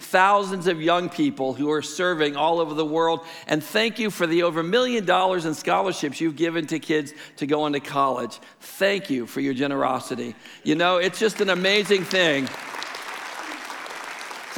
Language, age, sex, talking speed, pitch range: English, 60-79, male, 175 wpm, 155-195 Hz